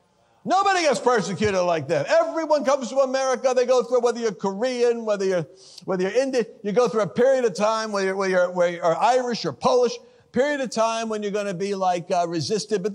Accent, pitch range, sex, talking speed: American, 205-270 Hz, male, 225 wpm